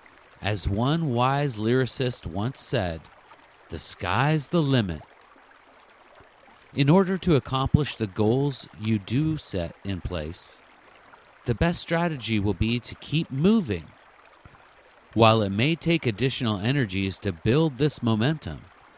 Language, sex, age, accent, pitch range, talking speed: English, male, 40-59, American, 100-145 Hz, 125 wpm